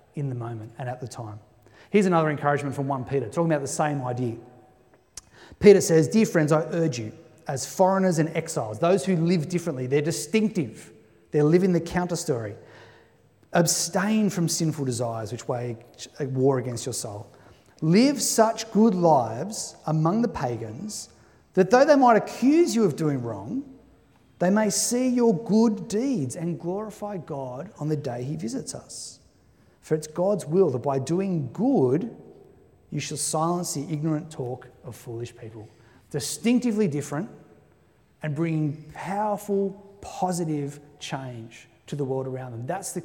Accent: Australian